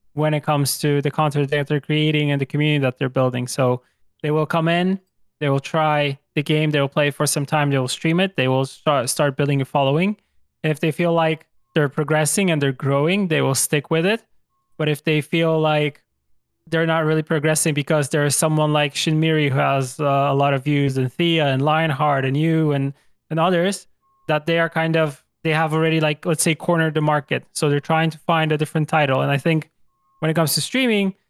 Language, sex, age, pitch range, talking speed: English, male, 20-39, 145-160 Hz, 225 wpm